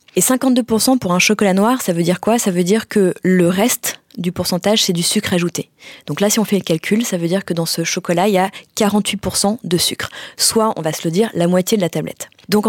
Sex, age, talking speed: female, 20-39, 255 wpm